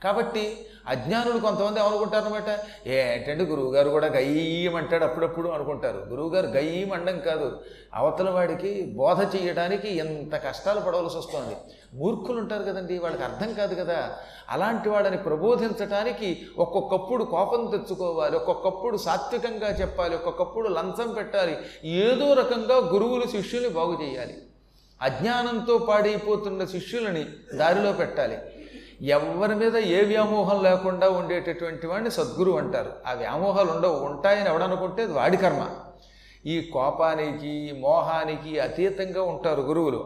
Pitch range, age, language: 165-215 Hz, 30-49, Telugu